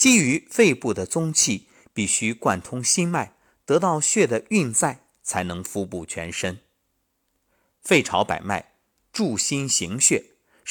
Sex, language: male, Chinese